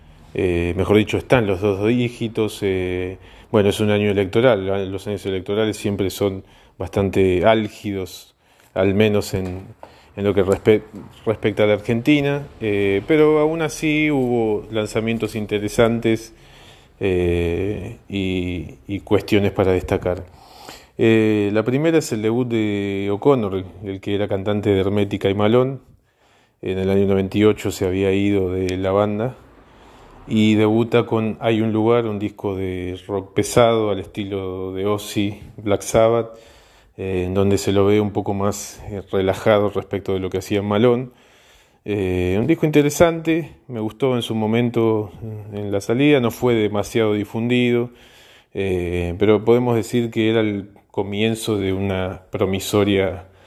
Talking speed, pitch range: 145 wpm, 95-115 Hz